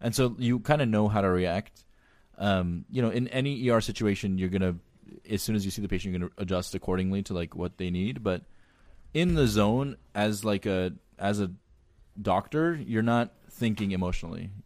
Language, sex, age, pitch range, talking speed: English, male, 20-39, 90-110 Hz, 205 wpm